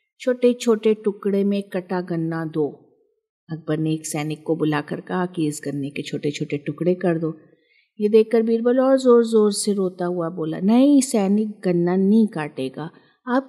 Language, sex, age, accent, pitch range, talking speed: Hindi, female, 50-69, native, 160-215 Hz, 175 wpm